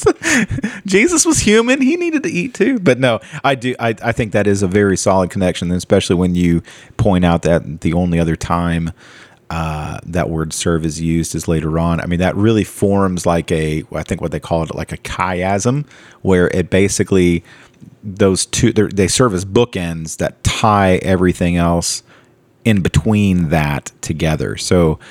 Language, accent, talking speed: English, American, 175 wpm